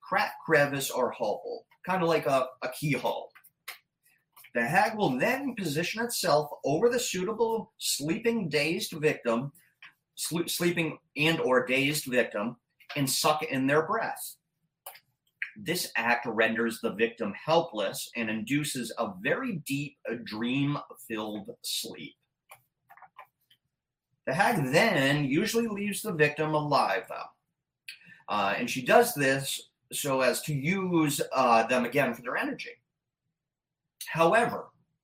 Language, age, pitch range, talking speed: English, 30-49, 130-200 Hz, 125 wpm